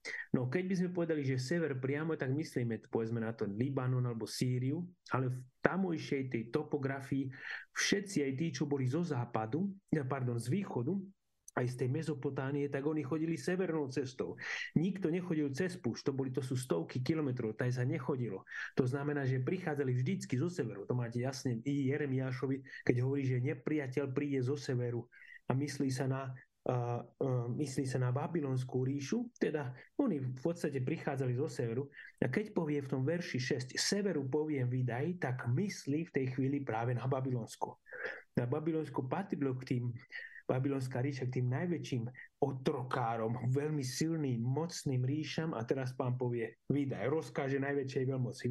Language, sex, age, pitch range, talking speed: Slovak, male, 30-49, 125-155 Hz, 160 wpm